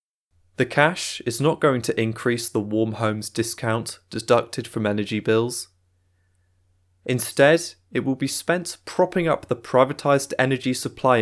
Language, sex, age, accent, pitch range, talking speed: English, male, 20-39, British, 95-135 Hz, 140 wpm